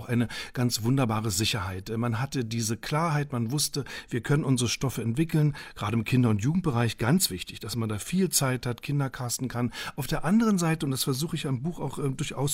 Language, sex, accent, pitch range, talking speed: German, male, German, 120-160 Hz, 210 wpm